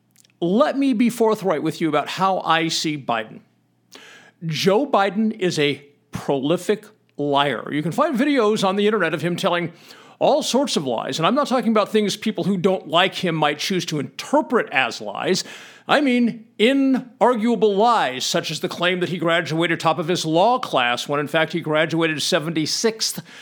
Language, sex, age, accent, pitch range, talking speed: English, male, 50-69, American, 160-225 Hz, 180 wpm